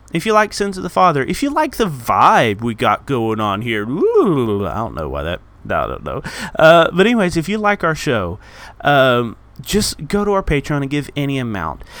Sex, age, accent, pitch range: male, 30-49, American, 110-165 Hz